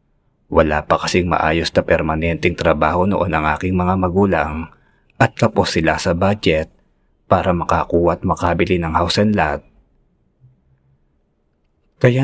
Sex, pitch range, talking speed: male, 75-90 Hz, 125 wpm